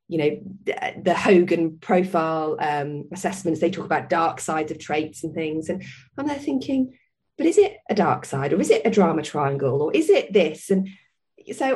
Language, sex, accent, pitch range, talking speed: English, female, British, 155-200 Hz, 195 wpm